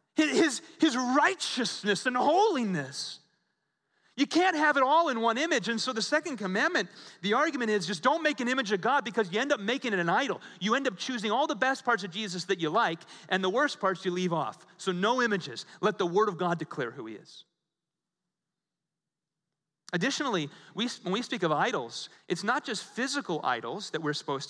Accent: American